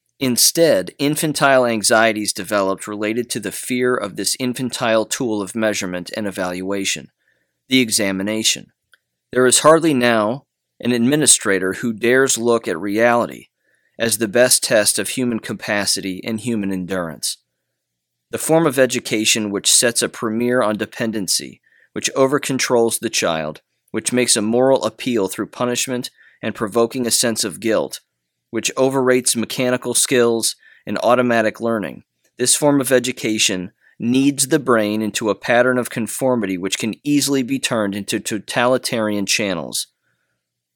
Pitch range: 105-125 Hz